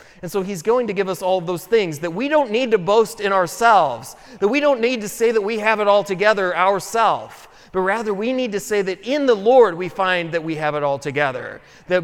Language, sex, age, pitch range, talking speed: English, male, 30-49, 185-235 Hz, 255 wpm